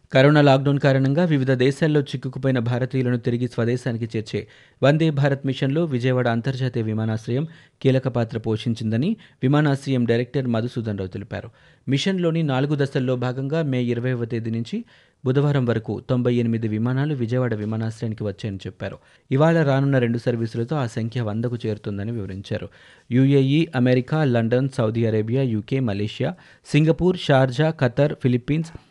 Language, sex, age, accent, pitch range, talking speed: Telugu, male, 30-49, native, 115-140 Hz, 125 wpm